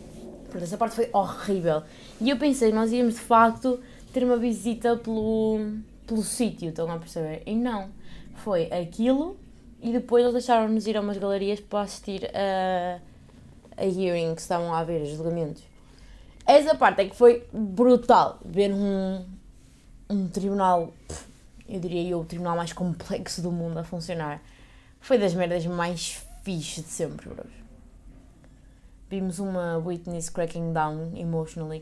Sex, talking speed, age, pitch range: female, 150 wpm, 20-39, 165-220 Hz